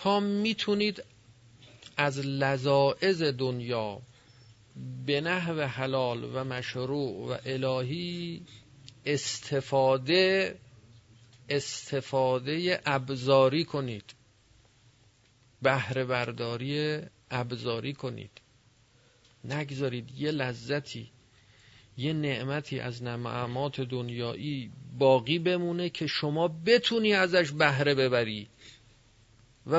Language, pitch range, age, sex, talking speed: Persian, 120-145 Hz, 40-59, male, 75 wpm